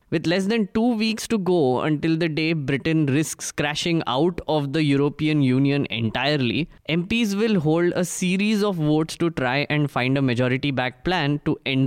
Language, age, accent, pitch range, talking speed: English, 20-39, Indian, 140-180 Hz, 175 wpm